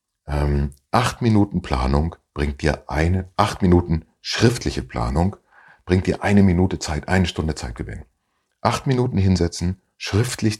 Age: 40-59